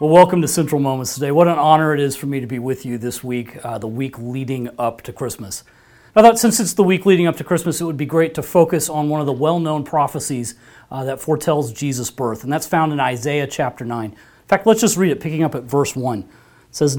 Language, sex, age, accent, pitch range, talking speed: English, male, 30-49, American, 120-165 Hz, 260 wpm